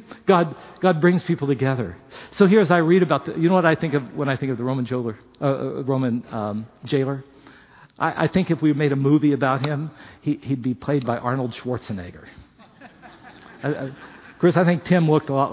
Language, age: English, 50-69